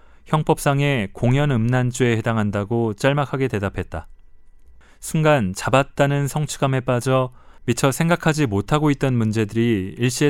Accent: native